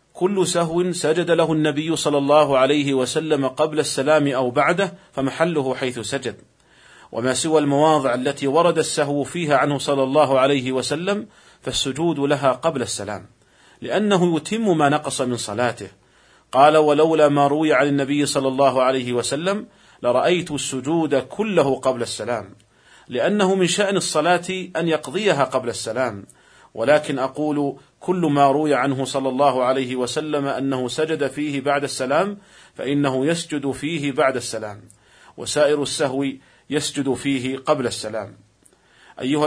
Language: Arabic